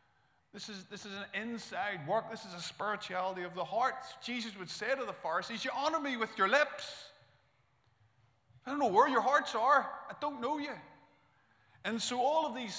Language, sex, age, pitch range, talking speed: English, male, 30-49, 170-235 Hz, 195 wpm